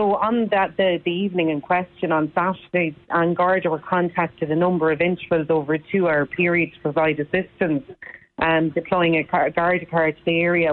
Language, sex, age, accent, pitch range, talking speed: English, female, 30-49, Irish, 160-180 Hz, 195 wpm